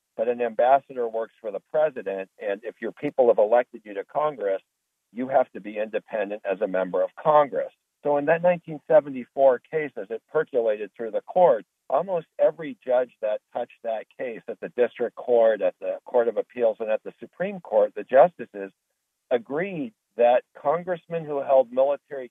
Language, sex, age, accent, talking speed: English, male, 50-69, American, 180 wpm